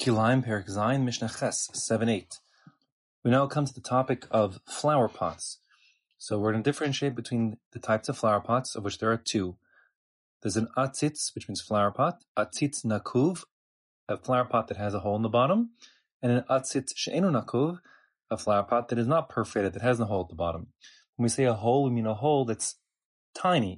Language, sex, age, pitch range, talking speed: English, male, 20-39, 105-135 Hz, 190 wpm